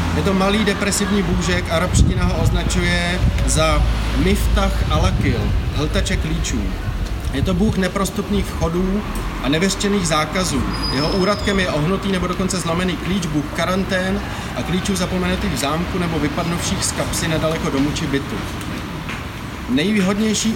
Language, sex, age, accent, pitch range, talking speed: Czech, male, 30-49, native, 130-185 Hz, 130 wpm